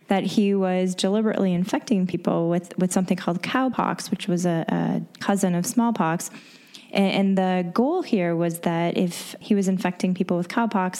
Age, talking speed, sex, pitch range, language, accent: 10-29, 175 wpm, female, 180-215 Hz, English, American